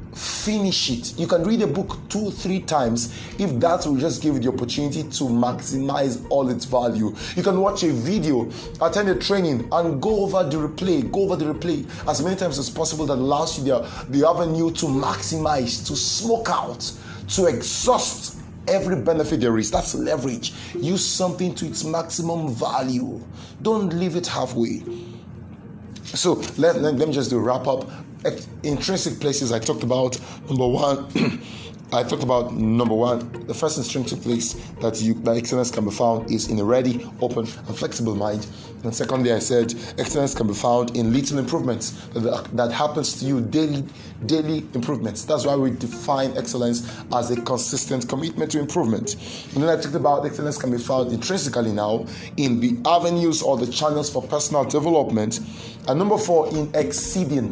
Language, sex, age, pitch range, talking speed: English, male, 30-49, 120-160 Hz, 175 wpm